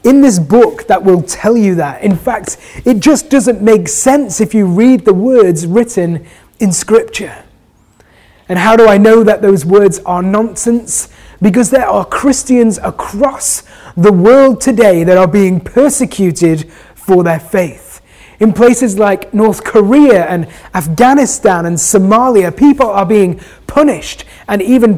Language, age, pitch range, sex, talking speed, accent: English, 30-49, 185-245 Hz, male, 150 wpm, British